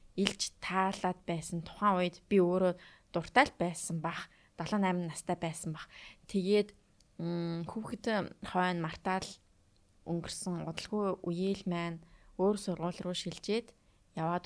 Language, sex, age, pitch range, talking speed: English, female, 20-39, 165-195 Hz, 115 wpm